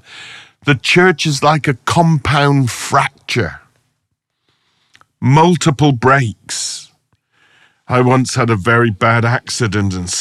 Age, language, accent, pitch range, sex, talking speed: 50-69, English, British, 105-135 Hz, male, 100 wpm